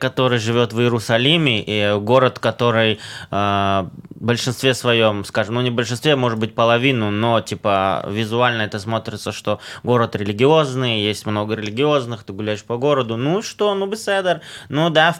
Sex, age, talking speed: male, 20-39, 160 wpm